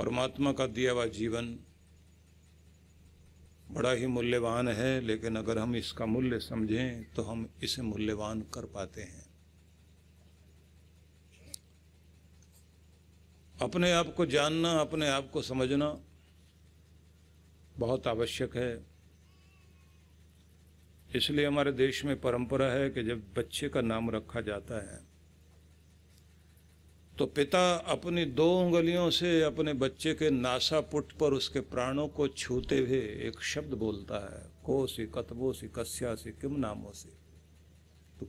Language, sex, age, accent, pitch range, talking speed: Hindi, male, 50-69, native, 80-130 Hz, 120 wpm